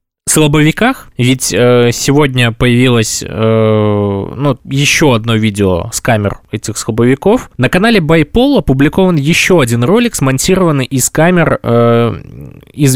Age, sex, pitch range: 20-39, male, 115-155 Hz